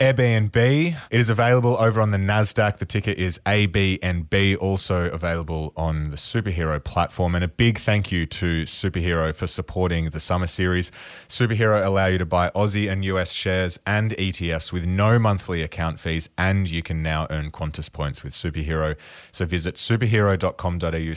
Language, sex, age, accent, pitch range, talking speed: English, male, 20-39, Australian, 80-100 Hz, 165 wpm